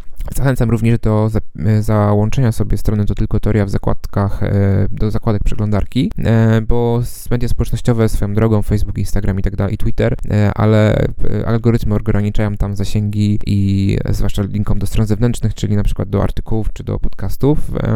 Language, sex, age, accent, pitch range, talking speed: Polish, male, 20-39, native, 100-110 Hz, 150 wpm